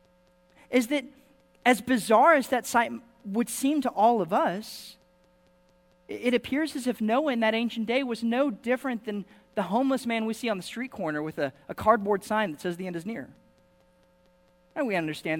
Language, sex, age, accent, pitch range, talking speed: English, male, 40-59, American, 175-240 Hz, 190 wpm